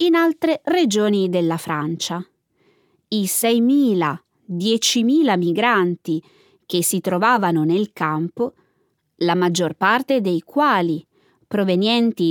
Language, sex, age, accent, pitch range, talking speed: Italian, female, 20-39, native, 175-265 Hz, 95 wpm